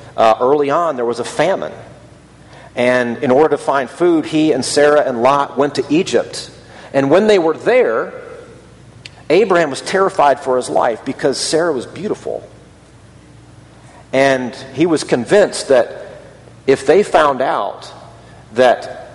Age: 40-59